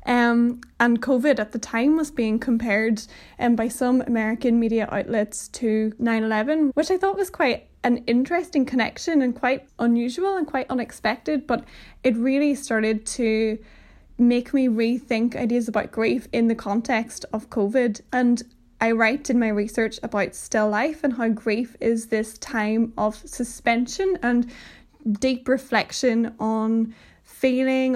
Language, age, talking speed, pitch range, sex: English, 10-29, 150 wpm, 225-265 Hz, female